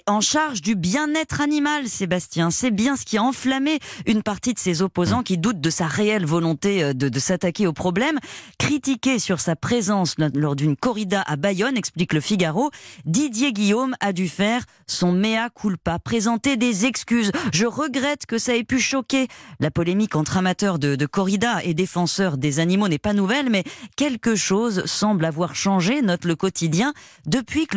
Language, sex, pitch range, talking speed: French, female, 180-255 Hz, 180 wpm